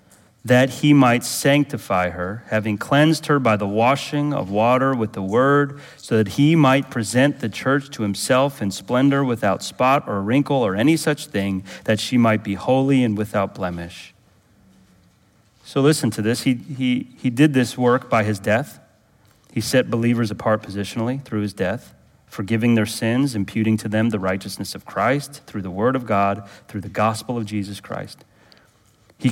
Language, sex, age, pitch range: English, male, 30-49, 105-140 Hz